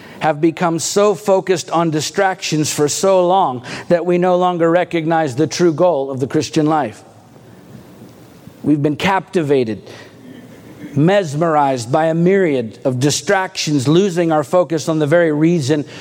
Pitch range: 150-180 Hz